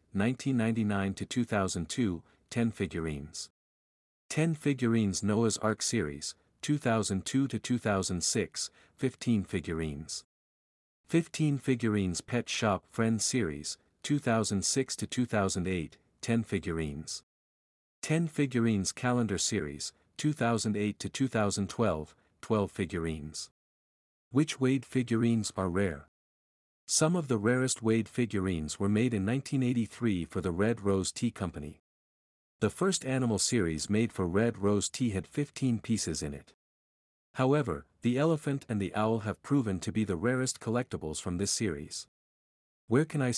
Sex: male